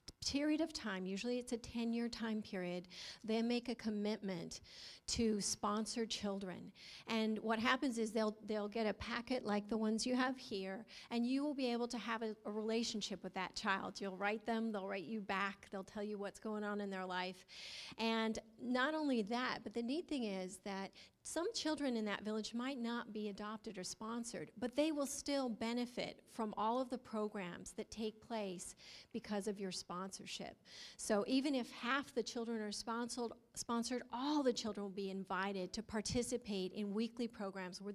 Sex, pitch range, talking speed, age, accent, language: female, 200-235 Hz, 185 wpm, 40-59, American, English